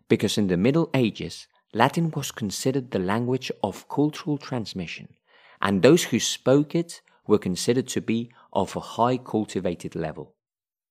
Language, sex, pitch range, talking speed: English, male, 105-145 Hz, 150 wpm